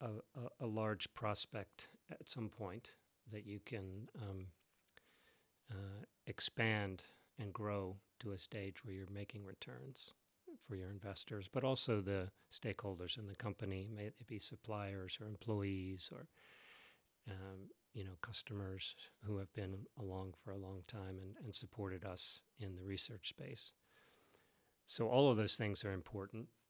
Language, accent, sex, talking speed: English, American, male, 145 wpm